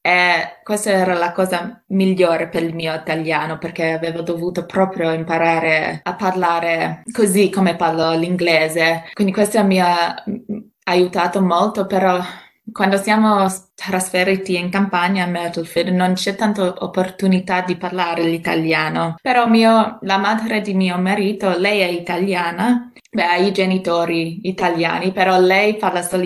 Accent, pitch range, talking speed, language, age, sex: native, 170-205 Hz, 140 wpm, Italian, 20-39, female